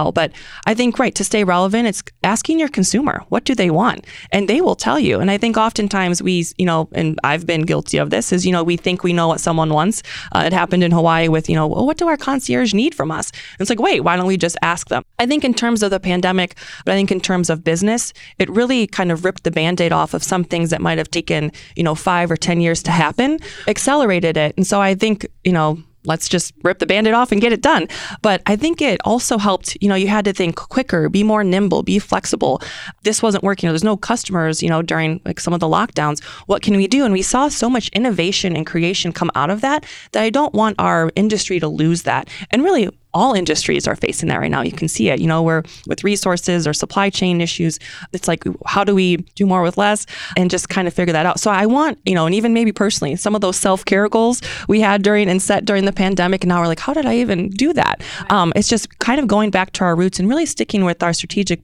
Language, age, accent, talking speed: English, 20-39, American, 260 wpm